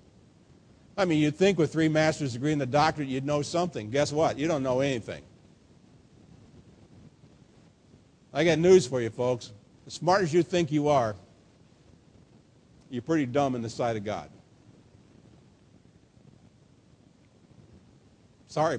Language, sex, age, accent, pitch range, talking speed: English, male, 50-69, American, 145-190 Hz, 135 wpm